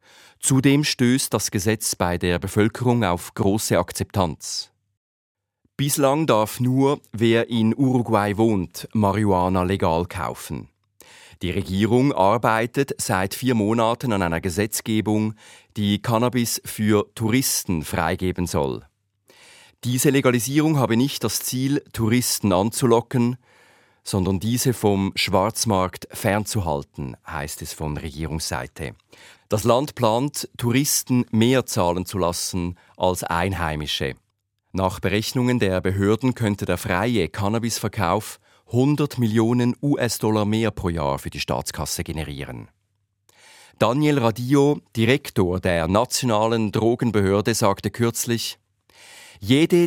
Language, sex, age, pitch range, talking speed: German, male, 40-59, 95-125 Hz, 105 wpm